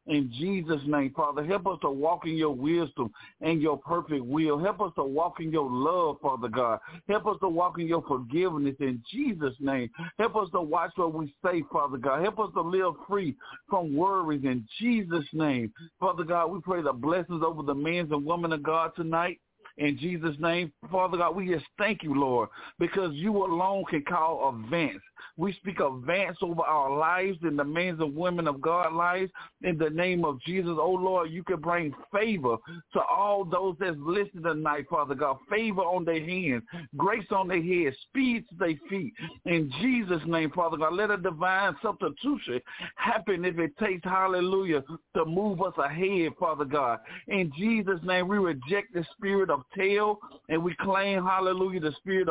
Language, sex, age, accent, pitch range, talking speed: English, male, 50-69, American, 160-190 Hz, 185 wpm